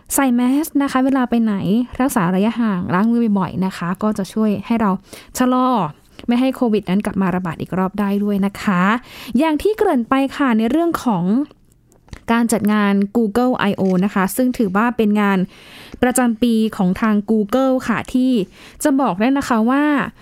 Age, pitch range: 10-29, 210-265 Hz